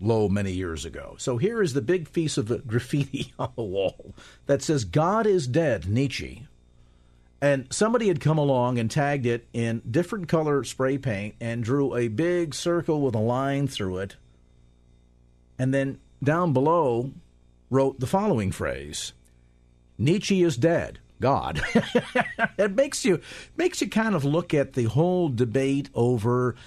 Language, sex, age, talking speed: English, male, 50-69, 160 wpm